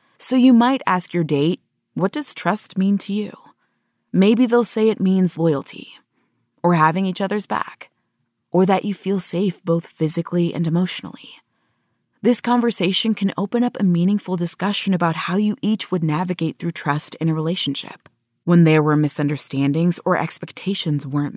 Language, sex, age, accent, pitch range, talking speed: English, female, 20-39, American, 155-195 Hz, 165 wpm